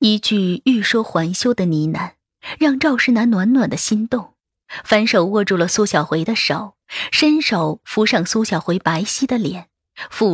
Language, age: Chinese, 20-39